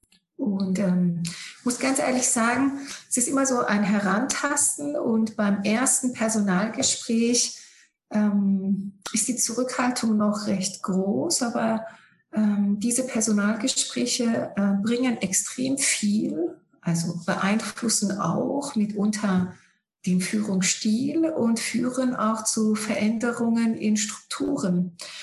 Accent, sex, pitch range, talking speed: German, female, 195-250 Hz, 105 wpm